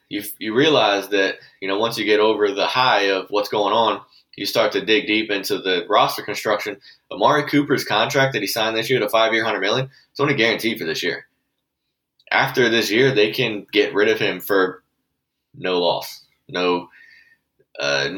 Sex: male